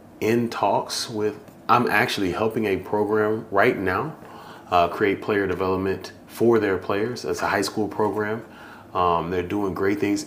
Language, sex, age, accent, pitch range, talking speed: English, male, 30-49, American, 95-110 Hz, 160 wpm